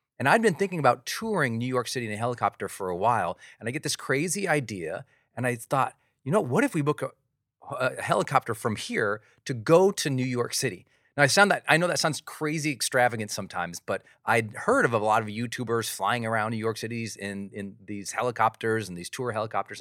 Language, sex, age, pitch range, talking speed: English, male, 40-59, 110-155 Hz, 220 wpm